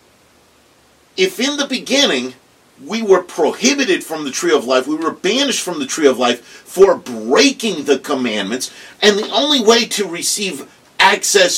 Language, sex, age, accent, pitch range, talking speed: English, male, 50-69, American, 200-275 Hz, 160 wpm